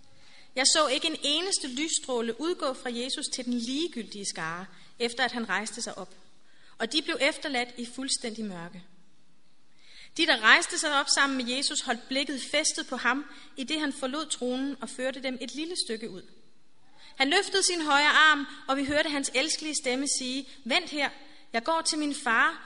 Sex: female